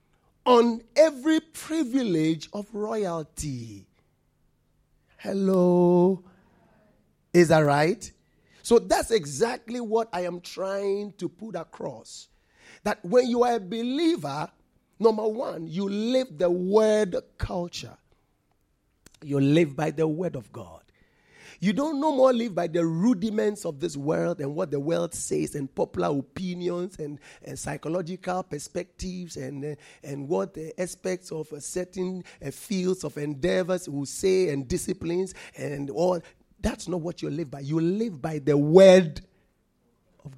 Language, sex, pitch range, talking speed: English, male, 155-210 Hz, 135 wpm